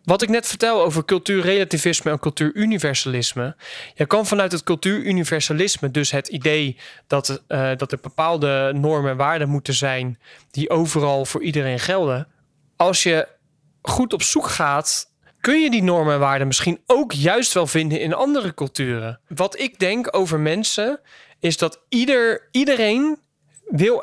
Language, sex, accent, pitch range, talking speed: Dutch, male, Dutch, 145-190 Hz, 150 wpm